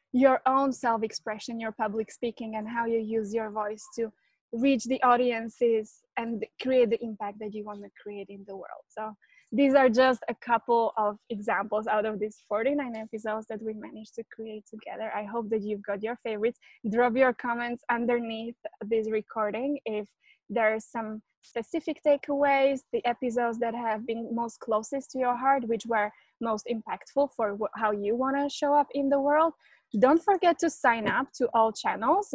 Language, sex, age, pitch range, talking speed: English, female, 20-39, 220-255 Hz, 180 wpm